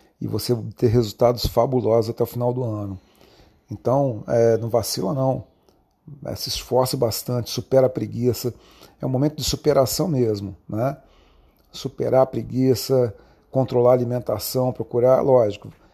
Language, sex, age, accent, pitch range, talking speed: Portuguese, male, 40-59, Brazilian, 110-130 Hz, 140 wpm